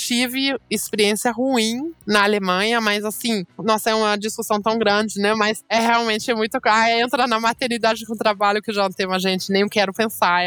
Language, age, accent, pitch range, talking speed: Portuguese, 20-39, Brazilian, 190-230 Hz, 190 wpm